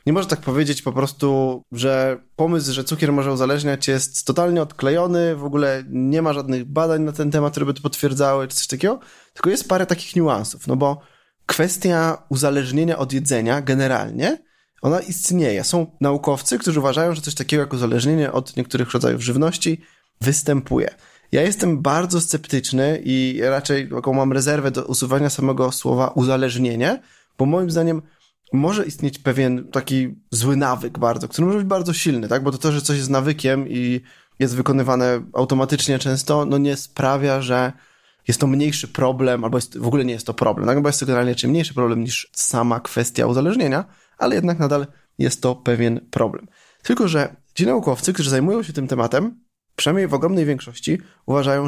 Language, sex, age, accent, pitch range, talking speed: Polish, male, 20-39, native, 130-155 Hz, 175 wpm